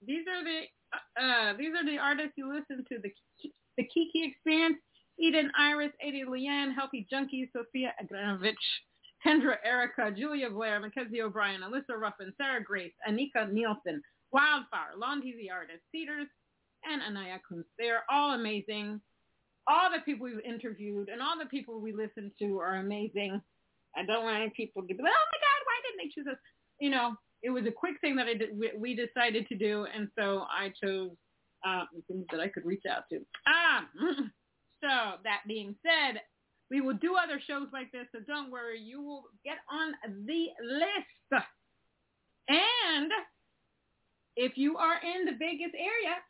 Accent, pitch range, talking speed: American, 220-300 Hz, 170 wpm